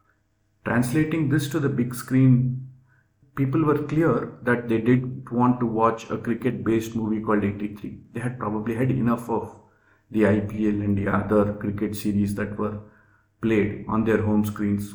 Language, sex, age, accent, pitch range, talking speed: English, male, 50-69, Indian, 105-125 Hz, 160 wpm